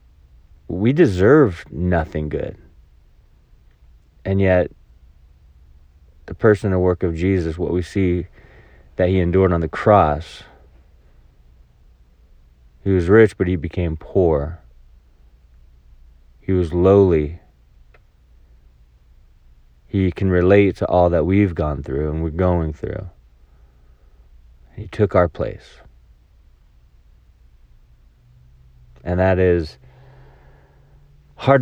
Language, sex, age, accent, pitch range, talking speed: English, male, 30-49, American, 65-95 Hz, 100 wpm